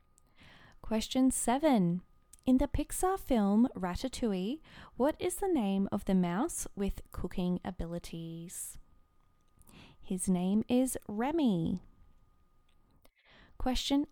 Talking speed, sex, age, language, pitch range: 95 wpm, female, 20-39, English, 175-255 Hz